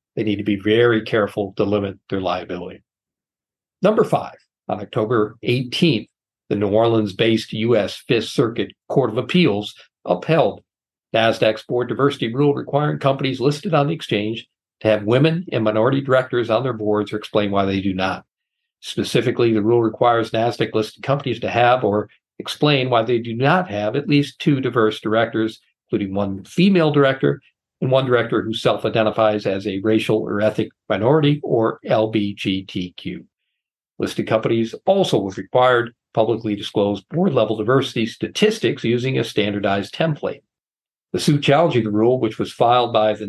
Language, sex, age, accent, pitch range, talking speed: English, male, 50-69, American, 105-135 Hz, 160 wpm